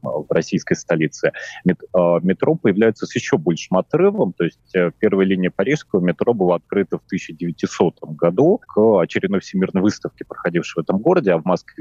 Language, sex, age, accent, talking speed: Russian, male, 30-49, native, 165 wpm